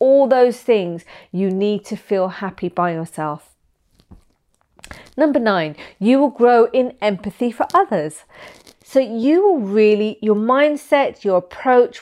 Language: English